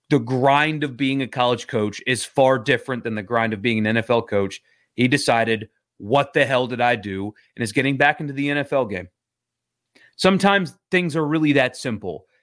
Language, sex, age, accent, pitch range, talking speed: English, male, 30-49, American, 115-150 Hz, 195 wpm